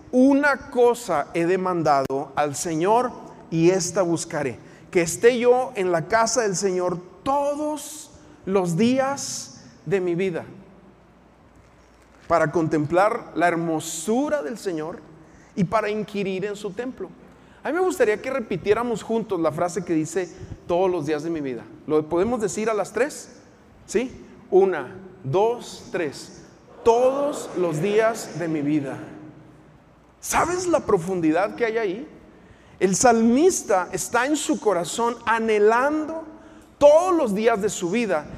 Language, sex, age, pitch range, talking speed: Spanish, male, 40-59, 170-245 Hz, 135 wpm